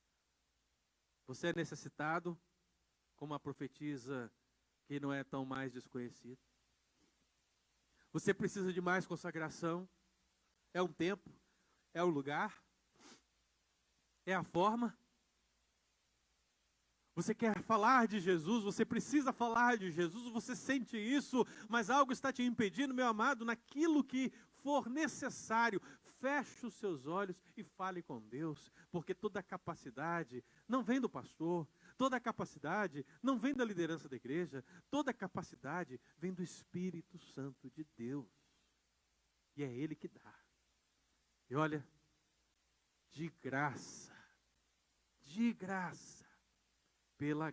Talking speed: 120 wpm